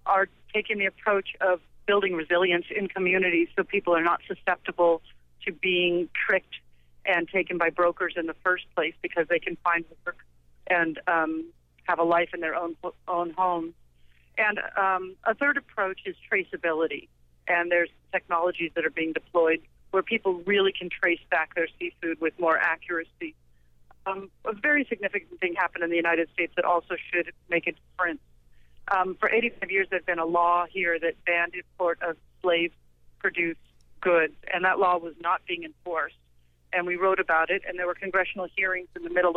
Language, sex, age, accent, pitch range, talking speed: English, female, 40-59, American, 165-190 Hz, 175 wpm